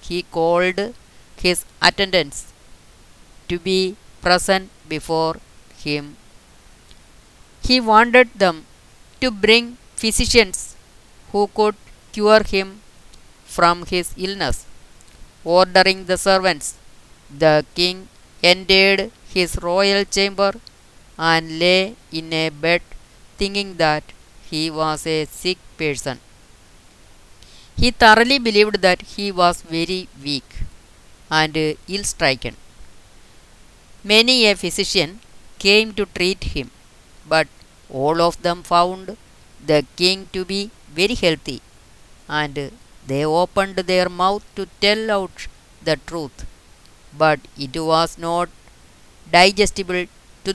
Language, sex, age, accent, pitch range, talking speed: Malayalam, female, 20-39, native, 155-195 Hz, 105 wpm